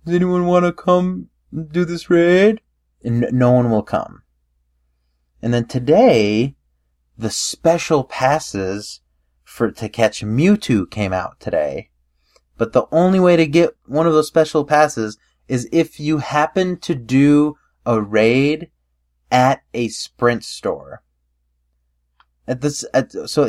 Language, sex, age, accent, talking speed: English, male, 30-49, American, 135 wpm